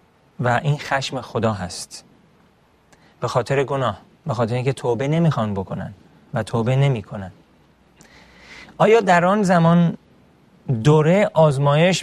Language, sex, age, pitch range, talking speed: Persian, male, 30-49, 120-150 Hz, 115 wpm